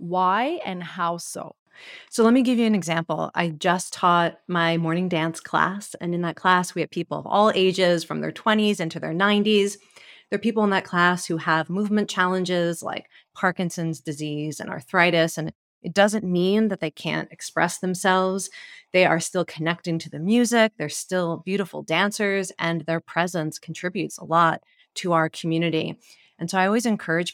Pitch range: 165-195 Hz